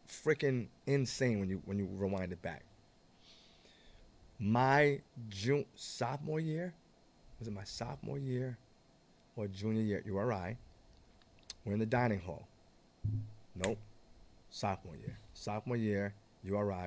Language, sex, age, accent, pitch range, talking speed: English, male, 30-49, American, 100-140 Hz, 115 wpm